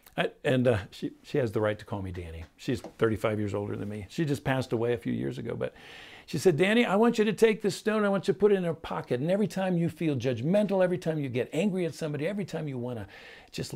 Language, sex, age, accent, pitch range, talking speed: English, male, 50-69, American, 110-165 Hz, 285 wpm